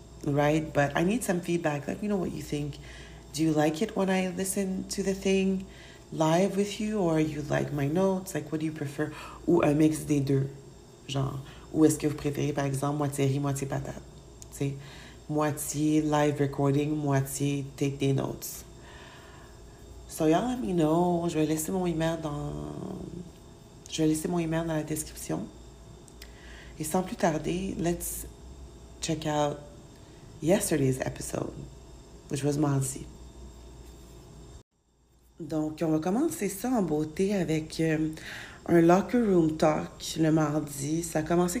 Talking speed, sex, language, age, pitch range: 160 wpm, female, English, 40-59, 140-170 Hz